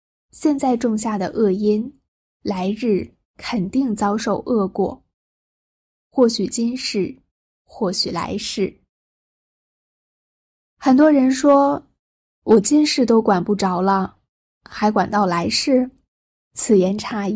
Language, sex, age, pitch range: Chinese, female, 10-29, 195-235 Hz